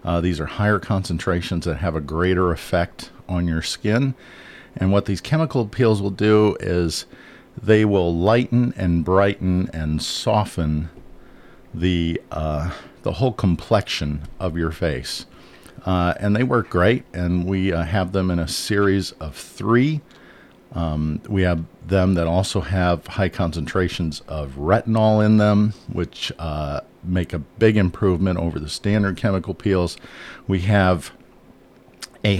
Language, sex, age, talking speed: English, male, 50-69, 145 wpm